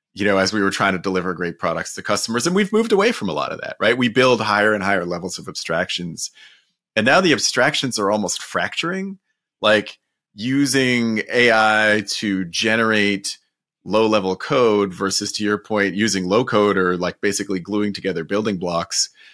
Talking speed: 175 wpm